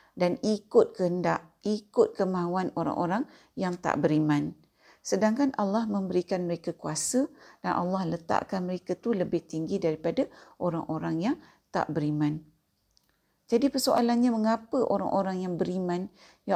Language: Malay